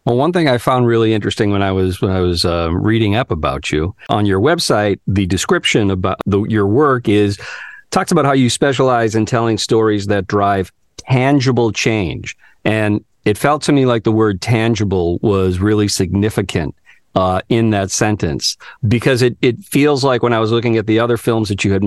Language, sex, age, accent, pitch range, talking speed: English, male, 50-69, American, 105-130 Hz, 200 wpm